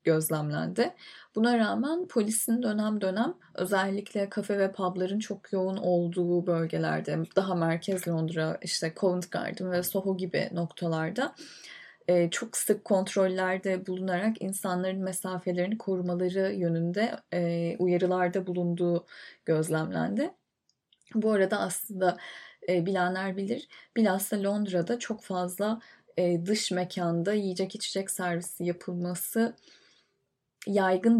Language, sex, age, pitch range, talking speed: Turkish, female, 10-29, 175-210 Hz, 100 wpm